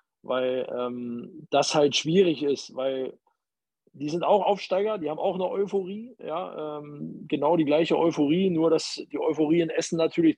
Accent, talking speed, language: German, 170 wpm, German